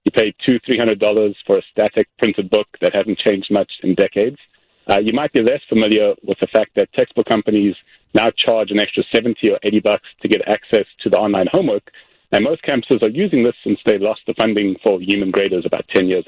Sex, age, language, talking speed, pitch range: male, 40-59, English, 220 wpm, 105-135 Hz